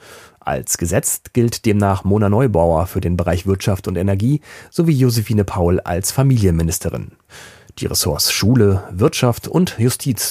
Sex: male